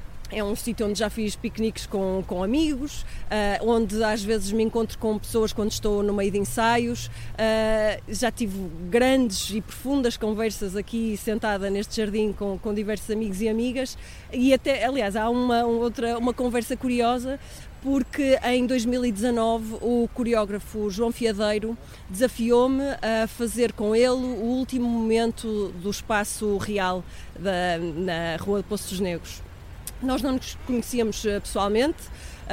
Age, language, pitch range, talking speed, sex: 20-39, Portuguese, 200-235 Hz, 140 wpm, female